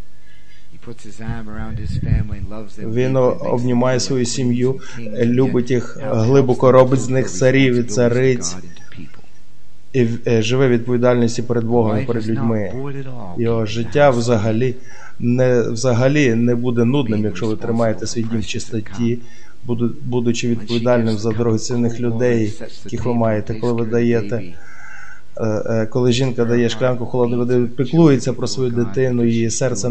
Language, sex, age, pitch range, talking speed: Ukrainian, male, 20-39, 115-130 Hz, 115 wpm